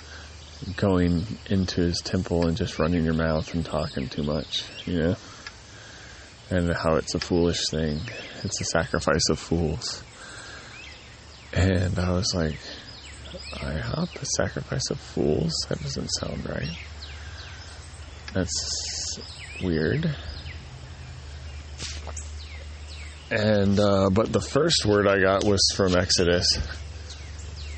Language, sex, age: English, male, 20-39